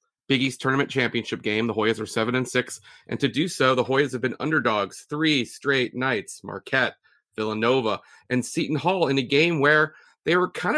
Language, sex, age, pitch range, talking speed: English, male, 30-49, 110-130 Hz, 195 wpm